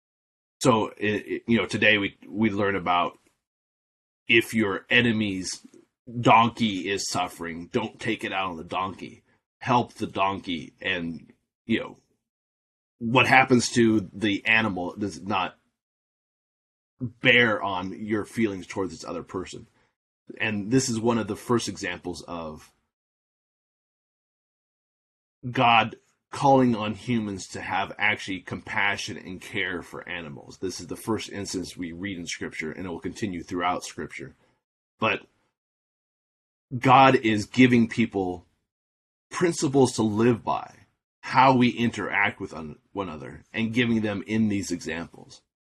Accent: American